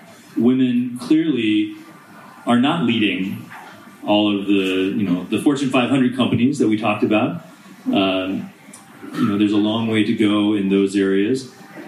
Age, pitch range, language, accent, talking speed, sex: 30-49, 105-145 Hz, English, American, 150 wpm, male